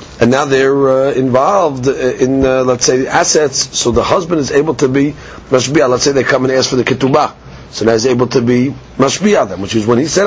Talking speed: 235 wpm